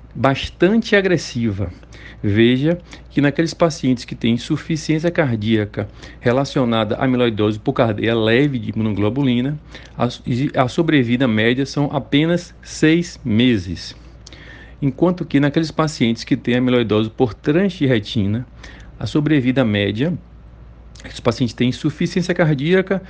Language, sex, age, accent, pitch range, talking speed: Portuguese, male, 40-59, Brazilian, 115-145 Hz, 110 wpm